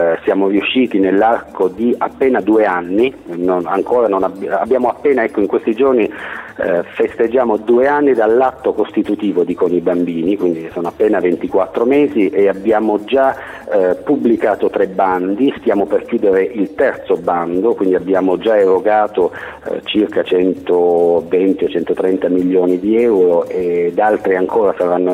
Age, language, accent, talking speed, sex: 40-59, Italian, native, 145 wpm, male